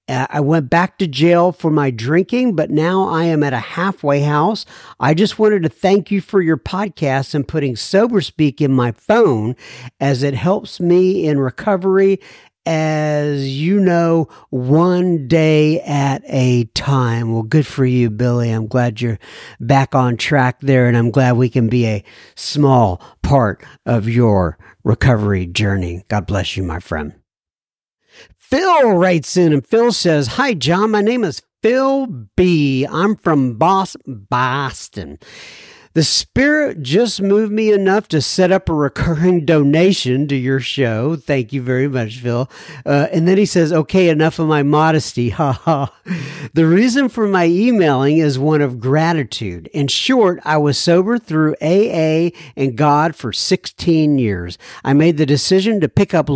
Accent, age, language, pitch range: American, 50-69, English, 130-180 Hz